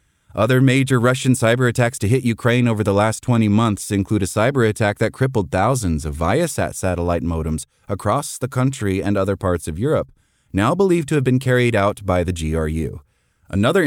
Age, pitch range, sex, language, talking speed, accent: 30-49, 90-125 Hz, male, English, 175 wpm, American